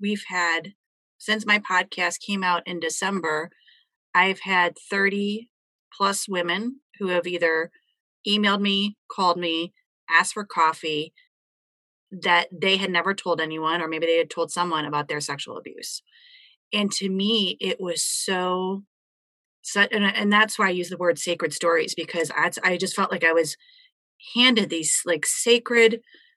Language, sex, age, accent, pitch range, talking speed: English, female, 30-49, American, 170-225 Hz, 150 wpm